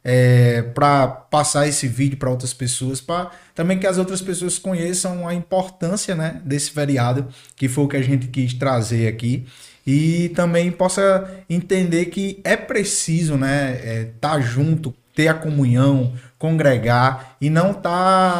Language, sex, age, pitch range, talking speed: Portuguese, male, 20-39, 135-170 Hz, 155 wpm